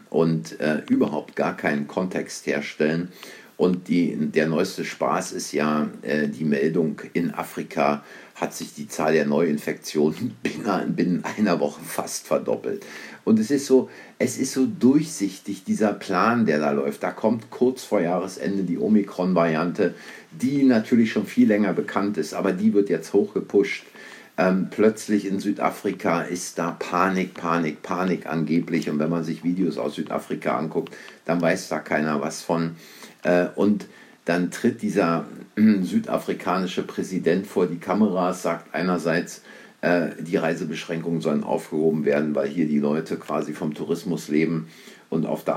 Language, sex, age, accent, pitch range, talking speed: German, male, 50-69, German, 80-100 Hz, 155 wpm